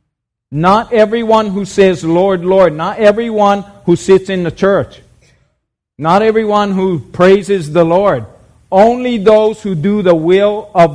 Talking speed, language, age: 145 wpm, English, 50-69